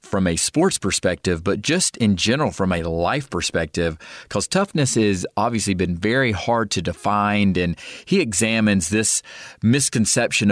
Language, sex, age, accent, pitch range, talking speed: English, male, 40-59, American, 100-115 Hz, 150 wpm